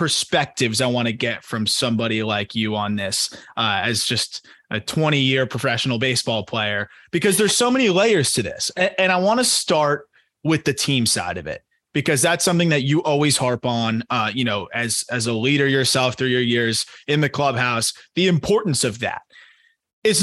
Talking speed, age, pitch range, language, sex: 195 wpm, 20-39, 120-175 Hz, English, male